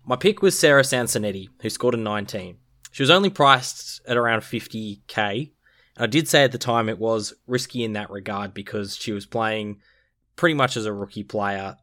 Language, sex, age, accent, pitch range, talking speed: English, male, 10-29, Australian, 105-130 Hz, 195 wpm